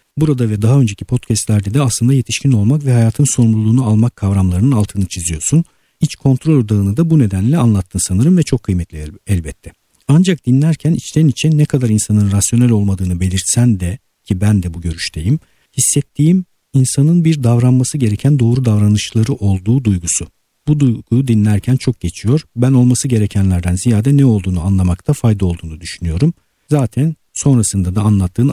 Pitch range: 95-130 Hz